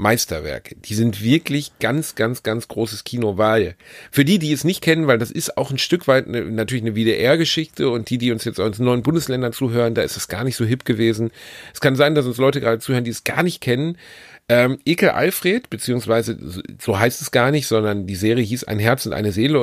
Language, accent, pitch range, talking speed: German, German, 110-140 Hz, 230 wpm